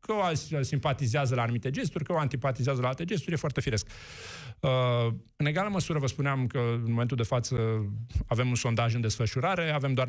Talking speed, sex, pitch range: 185 wpm, male, 115-140 Hz